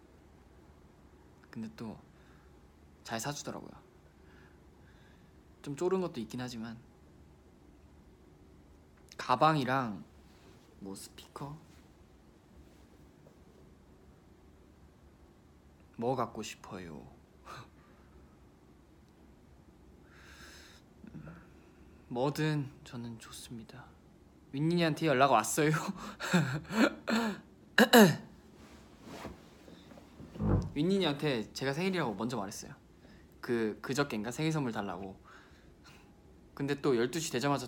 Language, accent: Korean, native